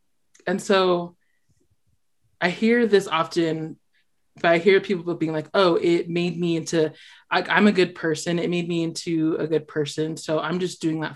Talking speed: 175 wpm